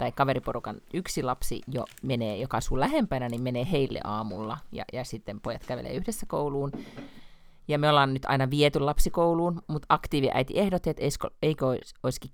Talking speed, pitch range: 160 wpm, 120-170 Hz